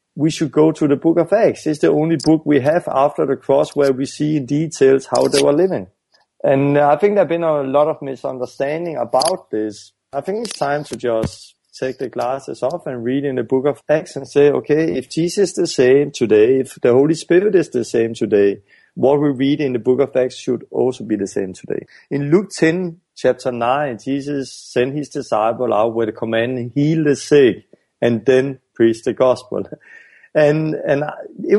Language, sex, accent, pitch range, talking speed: English, male, Danish, 130-160 Hz, 210 wpm